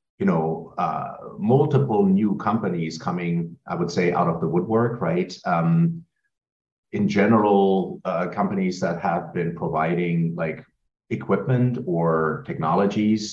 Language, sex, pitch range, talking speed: English, male, 80-125 Hz, 125 wpm